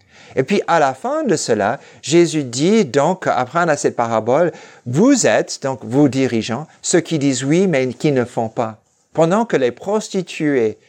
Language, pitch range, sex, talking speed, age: French, 125-185 Hz, male, 185 wpm, 50-69